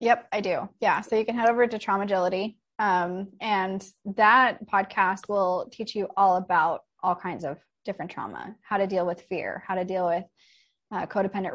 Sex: female